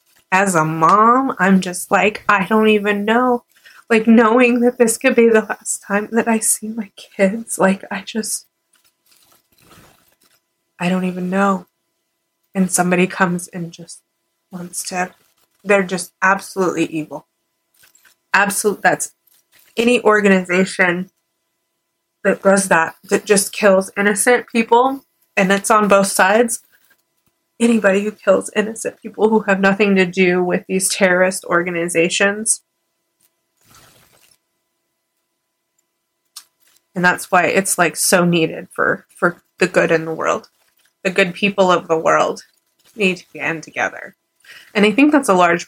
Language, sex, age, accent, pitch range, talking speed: English, female, 20-39, American, 175-220 Hz, 135 wpm